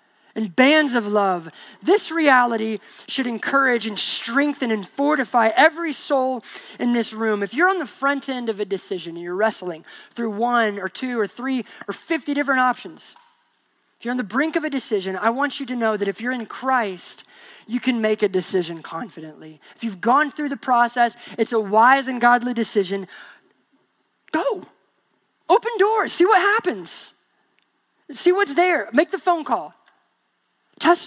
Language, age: English, 20-39